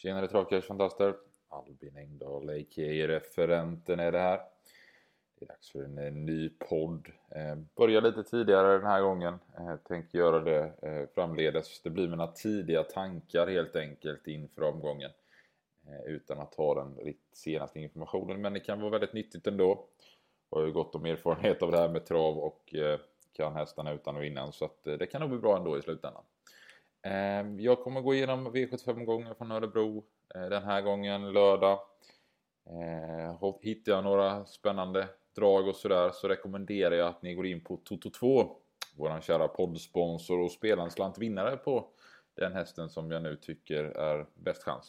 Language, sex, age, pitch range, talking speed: Swedish, male, 20-39, 80-105 Hz, 165 wpm